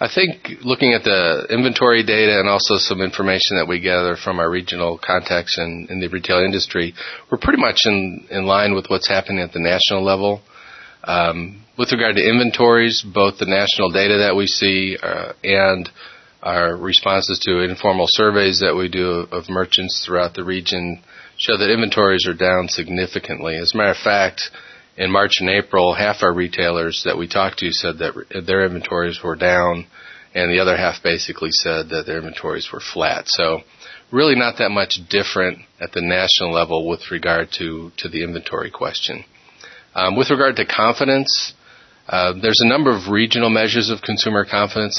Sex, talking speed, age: male, 180 wpm, 40-59